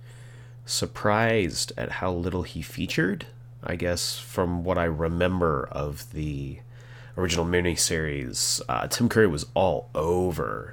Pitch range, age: 85-120 Hz, 30-49